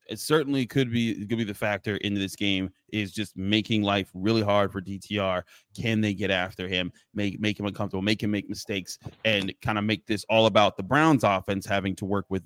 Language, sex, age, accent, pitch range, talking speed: English, male, 30-49, American, 100-115 Hz, 220 wpm